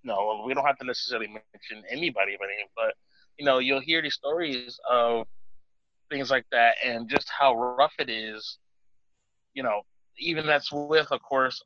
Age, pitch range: 20-39, 120-175 Hz